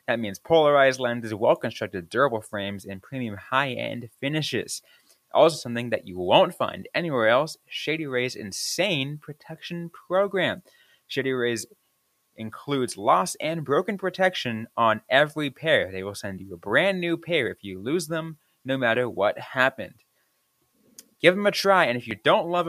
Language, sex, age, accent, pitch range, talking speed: English, male, 20-39, American, 110-170 Hz, 155 wpm